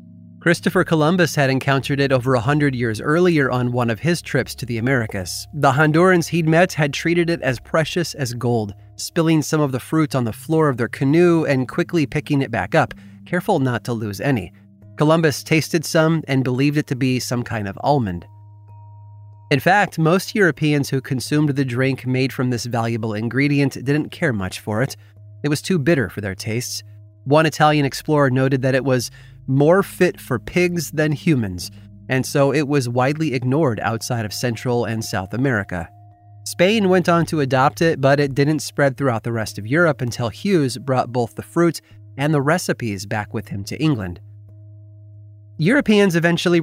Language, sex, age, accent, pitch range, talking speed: English, male, 30-49, American, 110-150 Hz, 185 wpm